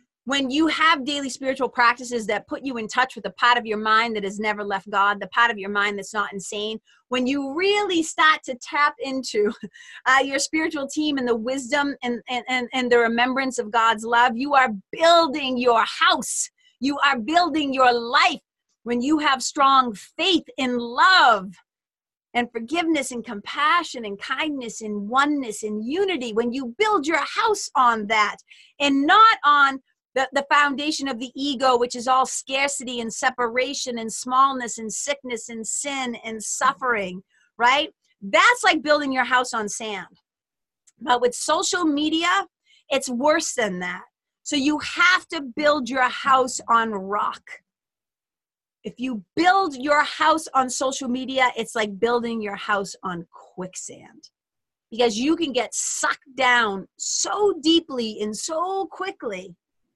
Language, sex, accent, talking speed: English, female, American, 160 wpm